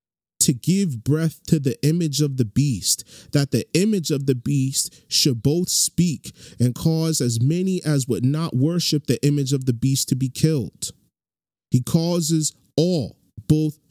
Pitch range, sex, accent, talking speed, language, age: 140-175 Hz, male, American, 165 wpm, English, 30-49